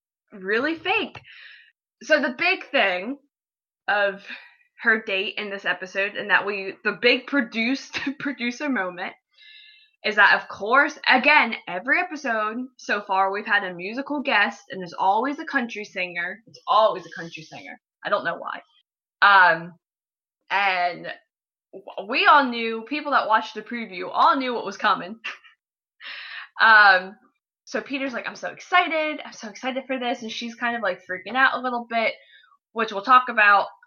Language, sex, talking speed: English, female, 160 wpm